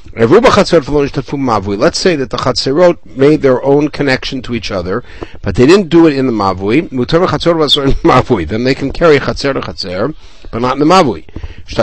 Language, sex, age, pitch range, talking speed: English, male, 60-79, 105-155 Hz, 150 wpm